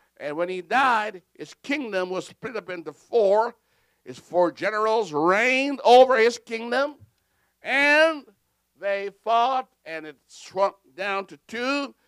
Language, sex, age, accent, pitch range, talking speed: English, male, 60-79, American, 170-245 Hz, 135 wpm